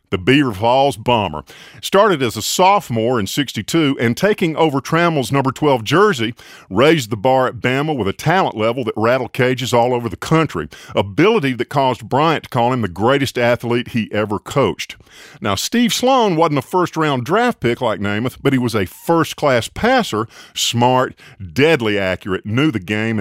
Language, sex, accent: English, male, American